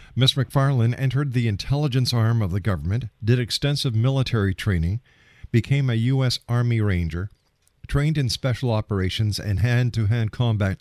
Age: 50-69